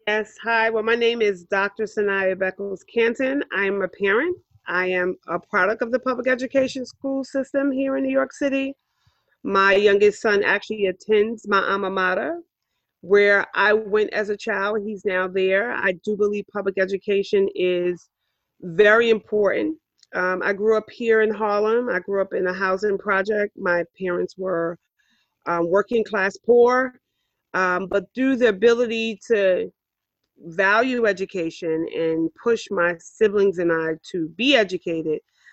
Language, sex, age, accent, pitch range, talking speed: English, female, 40-59, American, 185-235 Hz, 155 wpm